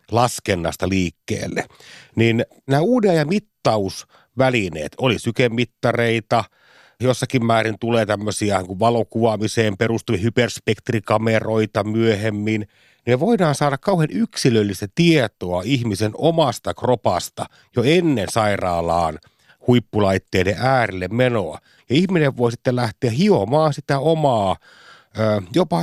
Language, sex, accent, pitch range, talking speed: Finnish, male, native, 105-140 Hz, 100 wpm